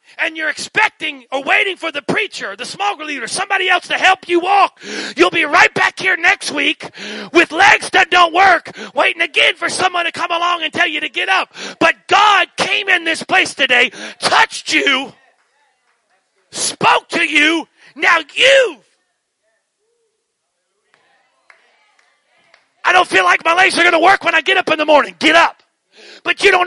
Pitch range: 305-375 Hz